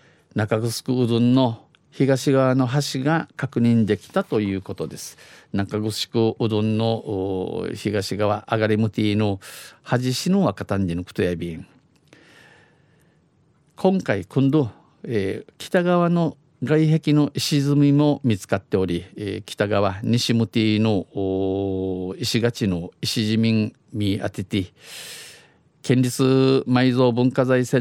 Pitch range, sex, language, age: 105-130 Hz, male, Japanese, 50-69